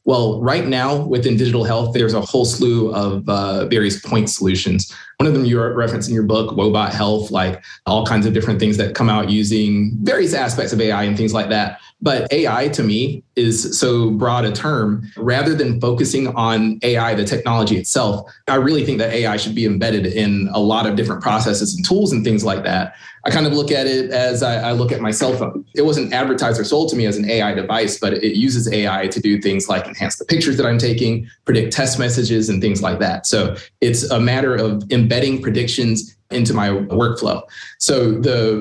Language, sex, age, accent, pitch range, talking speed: English, male, 20-39, American, 110-130 Hz, 215 wpm